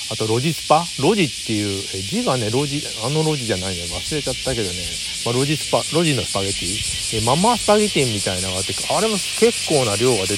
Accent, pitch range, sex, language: native, 100-145 Hz, male, Japanese